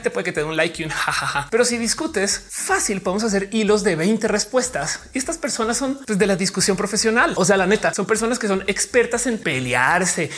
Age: 30-49